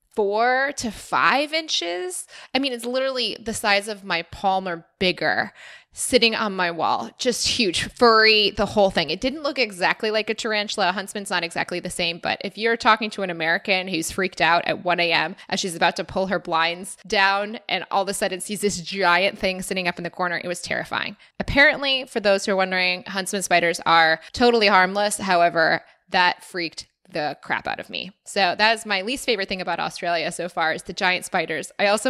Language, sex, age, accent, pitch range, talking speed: English, female, 20-39, American, 180-220 Hz, 210 wpm